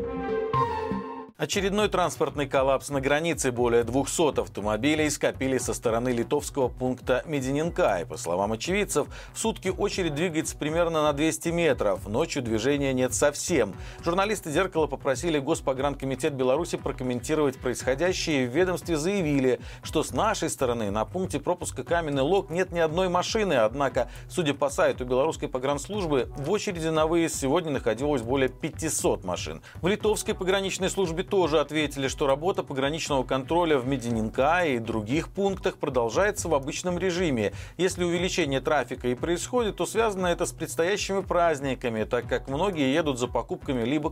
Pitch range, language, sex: 125-175 Hz, Russian, male